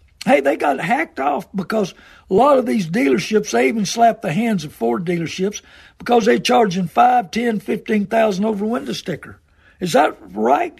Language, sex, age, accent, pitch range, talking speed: English, male, 60-79, American, 185-230 Hz, 180 wpm